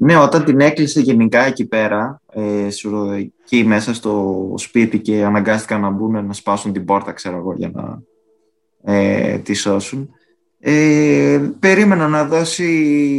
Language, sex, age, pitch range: Greek, male, 20-39, 100-125 Hz